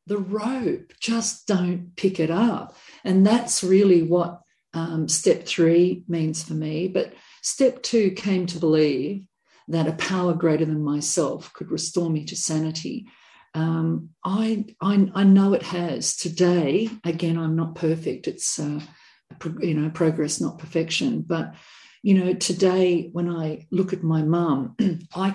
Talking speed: 150 wpm